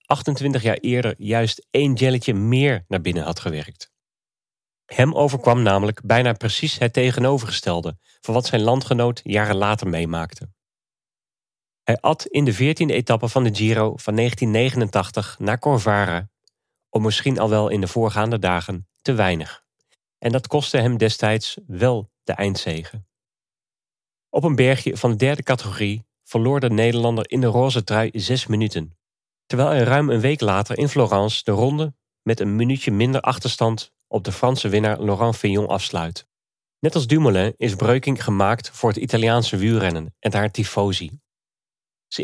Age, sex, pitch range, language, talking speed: 40-59, male, 105-130 Hz, Dutch, 155 wpm